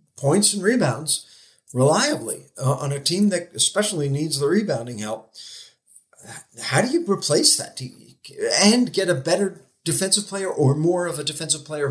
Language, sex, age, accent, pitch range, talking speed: English, male, 50-69, American, 130-160 Hz, 160 wpm